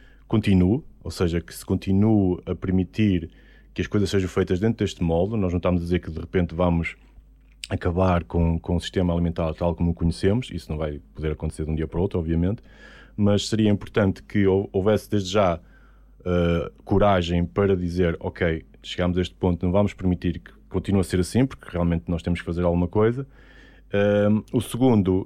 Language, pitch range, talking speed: Portuguese, 85-105 Hz, 195 wpm